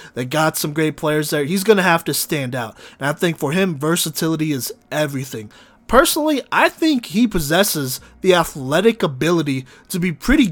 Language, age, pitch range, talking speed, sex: English, 20-39, 140-185 Hz, 175 wpm, male